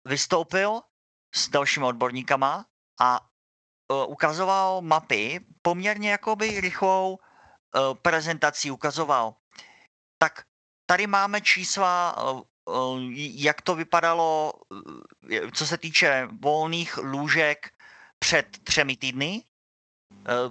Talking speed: 95 wpm